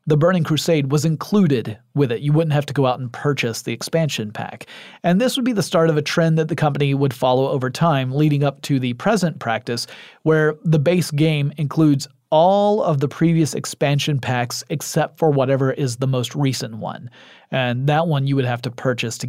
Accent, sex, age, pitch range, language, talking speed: American, male, 30-49, 130-160 Hz, English, 210 wpm